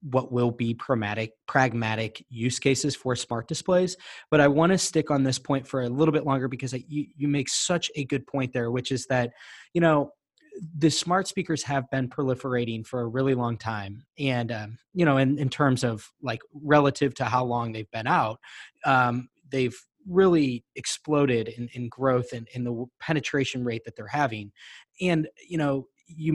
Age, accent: 20-39, American